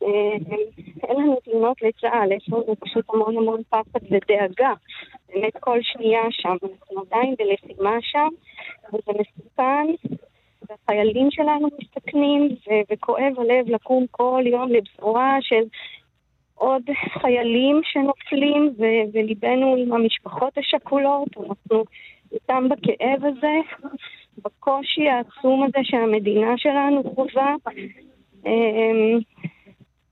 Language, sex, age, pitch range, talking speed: Hebrew, female, 20-39, 220-265 Hz, 100 wpm